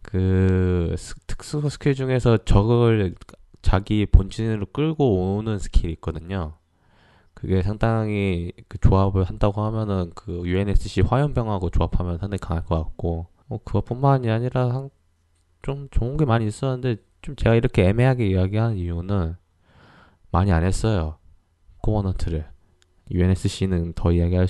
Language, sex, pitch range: Korean, male, 85-110 Hz